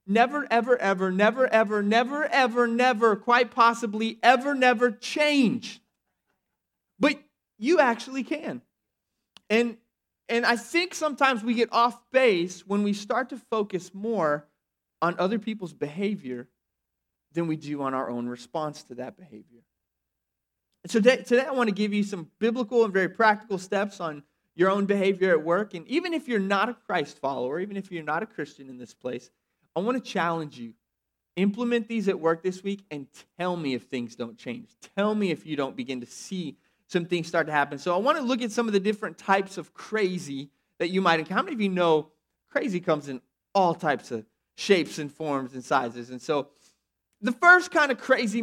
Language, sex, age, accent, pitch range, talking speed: English, male, 30-49, American, 160-235 Hz, 190 wpm